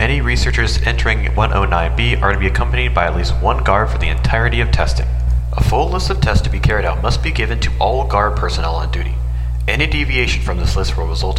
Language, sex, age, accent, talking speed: English, male, 30-49, American, 225 wpm